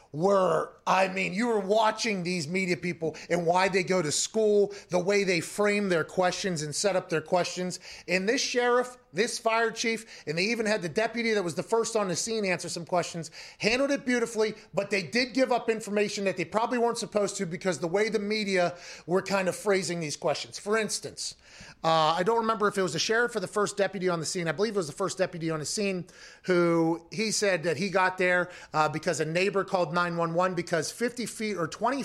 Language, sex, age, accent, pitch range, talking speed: English, male, 30-49, American, 170-210 Hz, 225 wpm